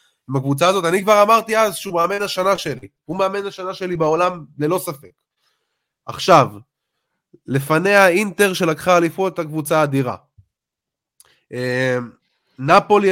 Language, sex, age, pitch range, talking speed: Hebrew, male, 20-39, 145-195 Hz, 120 wpm